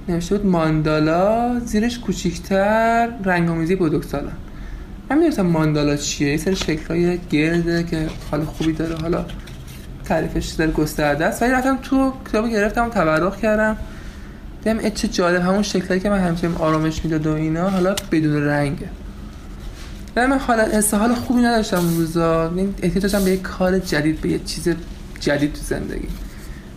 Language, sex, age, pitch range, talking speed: Persian, male, 20-39, 155-215 Hz, 155 wpm